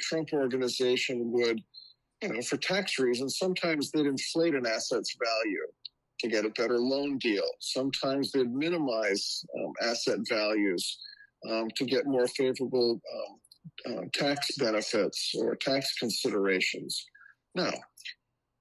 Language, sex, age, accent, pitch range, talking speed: English, male, 50-69, American, 120-140 Hz, 125 wpm